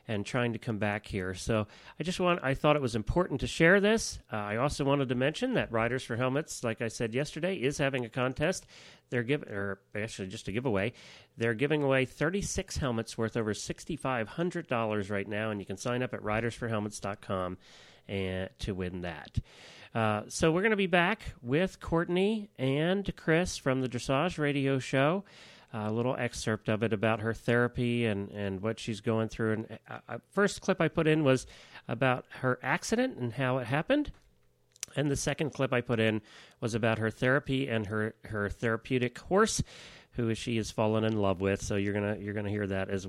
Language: English